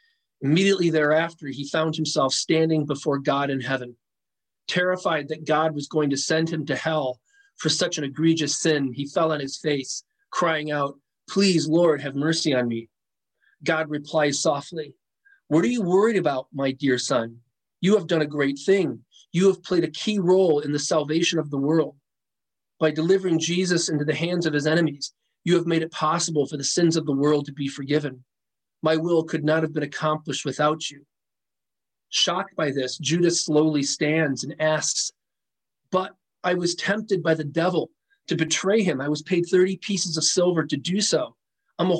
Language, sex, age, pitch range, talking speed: English, male, 40-59, 140-170 Hz, 185 wpm